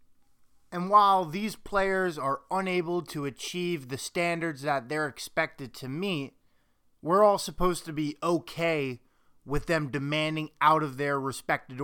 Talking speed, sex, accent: 140 wpm, male, American